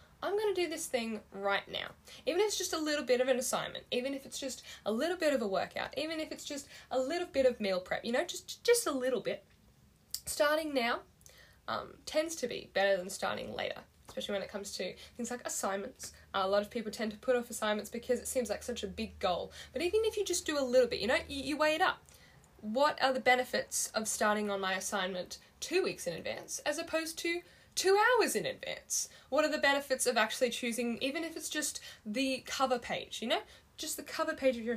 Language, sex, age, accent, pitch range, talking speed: English, female, 10-29, Australian, 210-300 Hz, 240 wpm